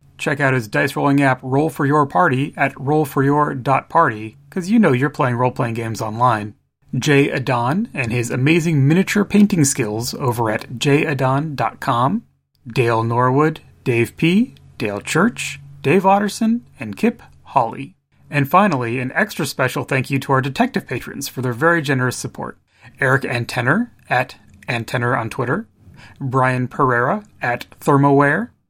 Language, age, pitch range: English, 30-49, 125-160 Hz